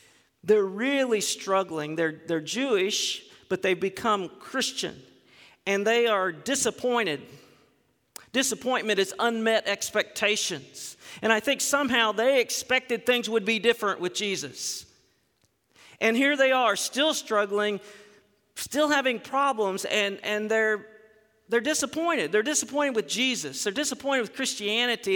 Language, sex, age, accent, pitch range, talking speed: English, male, 50-69, American, 200-265 Hz, 125 wpm